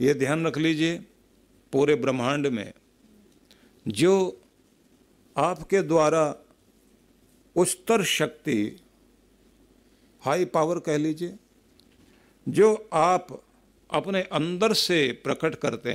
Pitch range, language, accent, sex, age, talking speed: 120-165 Hz, Hindi, native, male, 50-69, 85 wpm